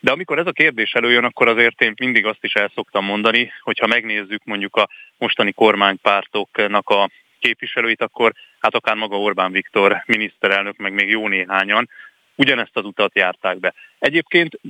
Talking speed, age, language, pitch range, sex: 160 wpm, 30-49, Hungarian, 100-115 Hz, male